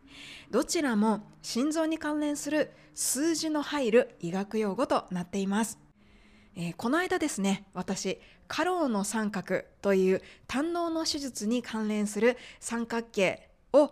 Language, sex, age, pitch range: Japanese, female, 20-39, 200-275 Hz